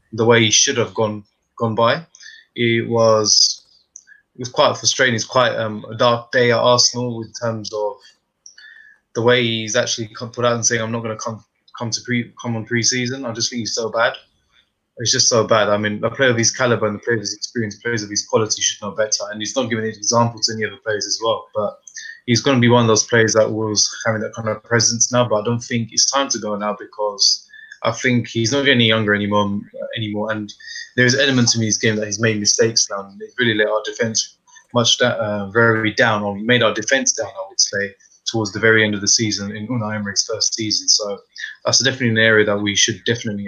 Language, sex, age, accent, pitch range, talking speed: English, male, 20-39, British, 110-120 Hz, 240 wpm